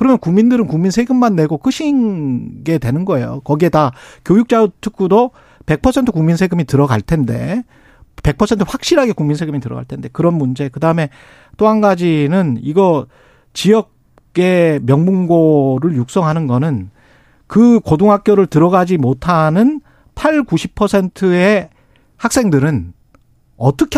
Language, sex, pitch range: Korean, male, 140-205 Hz